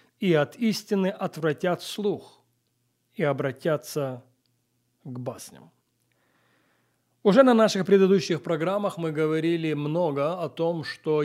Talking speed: 105 wpm